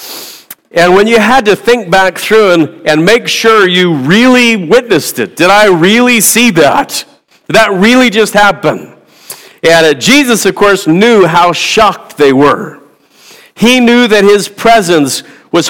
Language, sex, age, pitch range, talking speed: English, male, 50-69, 170-225 Hz, 160 wpm